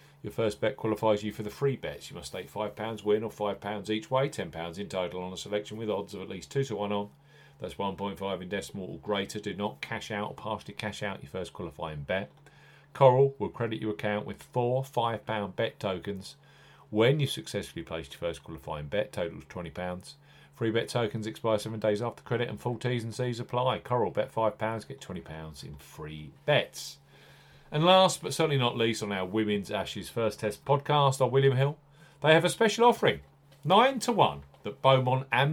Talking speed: 205 wpm